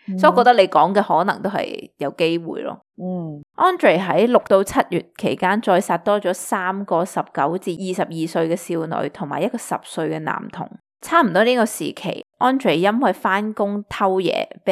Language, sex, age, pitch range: Chinese, female, 20-39, 170-220 Hz